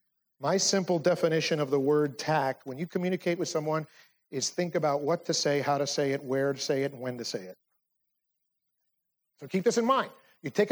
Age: 50-69